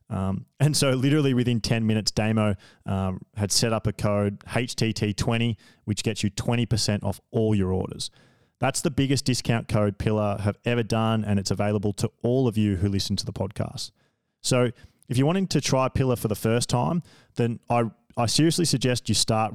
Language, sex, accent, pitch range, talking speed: English, male, Australian, 105-120 Hz, 205 wpm